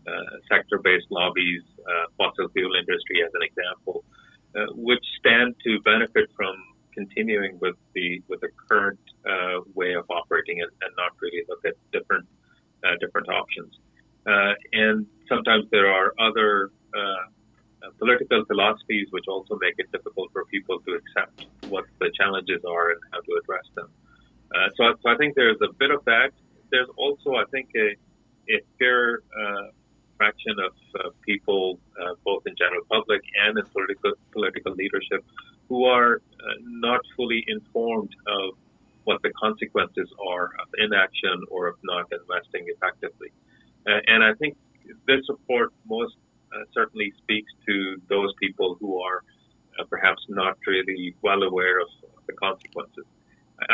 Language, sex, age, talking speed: English, male, 30-49, 155 wpm